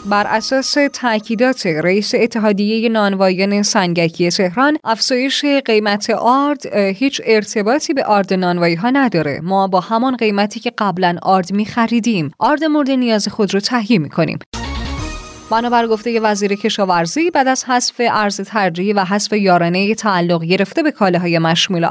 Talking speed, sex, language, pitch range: 140 wpm, female, Persian, 185-240 Hz